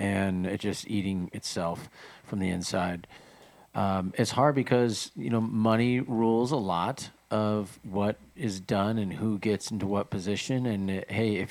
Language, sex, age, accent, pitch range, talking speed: English, male, 40-59, American, 100-125 Hz, 165 wpm